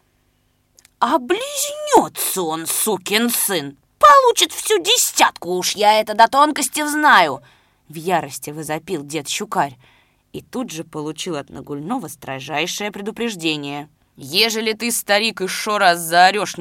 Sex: female